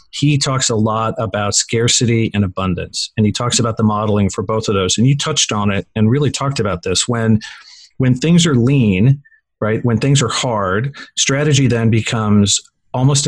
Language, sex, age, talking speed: English, male, 40-59, 190 wpm